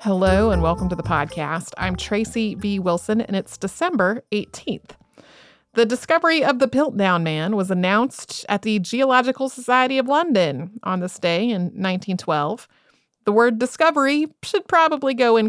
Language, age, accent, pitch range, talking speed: English, 30-49, American, 185-255 Hz, 155 wpm